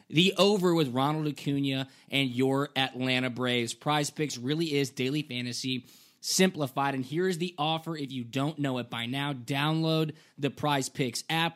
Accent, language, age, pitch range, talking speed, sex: American, English, 20-39, 130-155 Hz, 170 wpm, male